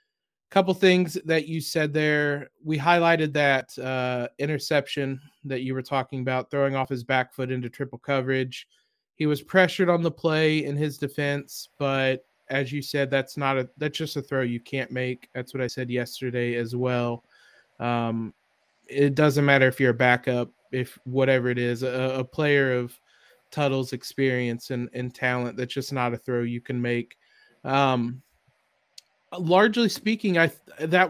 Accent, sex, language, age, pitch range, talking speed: American, male, English, 20-39, 130-150 Hz, 170 wpm